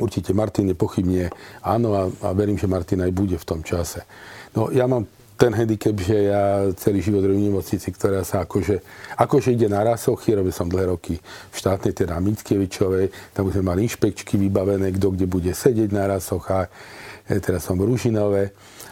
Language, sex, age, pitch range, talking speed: Slovak, male, 50-69, 95-110 Hz, 185 wpm